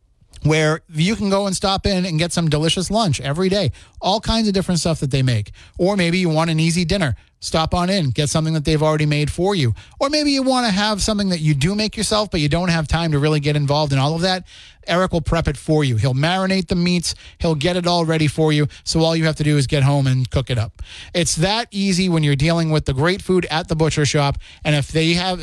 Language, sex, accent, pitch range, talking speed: English, male, American, 150-190 Hz, 265 wpm